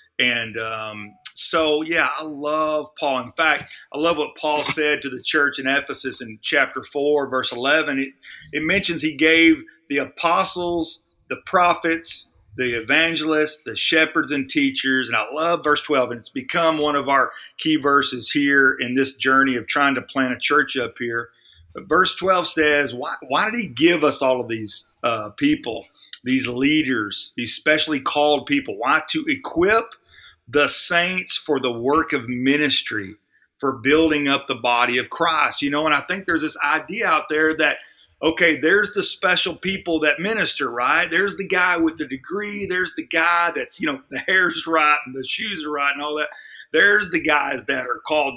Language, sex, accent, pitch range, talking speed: English, male, American, 135-170 Hz, 185 wpm